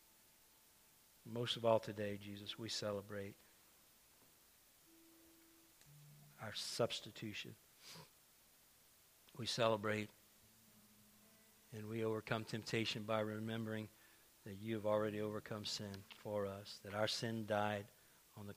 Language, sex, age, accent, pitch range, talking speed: English, male, 50-69, American, 105-120 Hz, 100 wpm